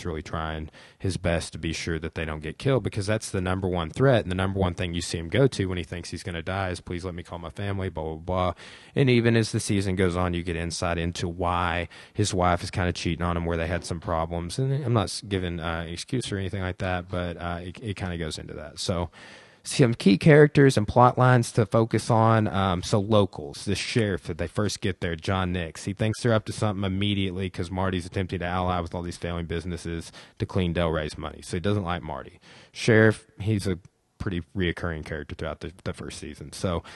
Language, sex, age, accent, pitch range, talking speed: English, male, 20-39, American, 85-105 Hz, 240 wpm